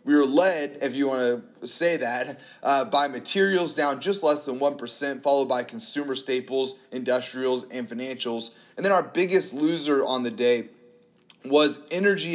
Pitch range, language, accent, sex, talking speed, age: 120-155 Hz, English, American, male, 170 wpm, 30-49